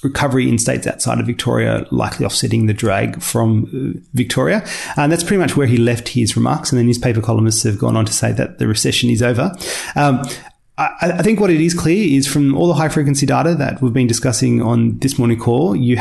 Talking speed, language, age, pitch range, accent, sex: 215 wpm, English, 30-49, 115-135 Hz, Australian, male